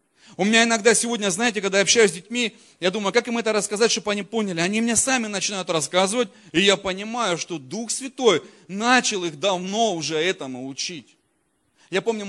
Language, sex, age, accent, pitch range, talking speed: Russian, male, 30-49, native, 140-195 Hz, 185 wpm